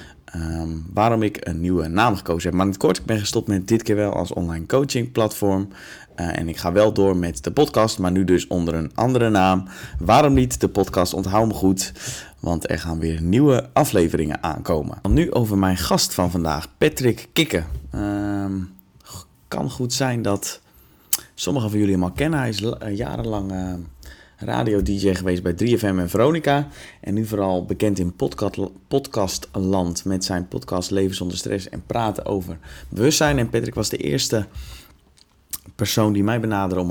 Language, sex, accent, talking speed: Dutch, male, Dutch, 180 wpm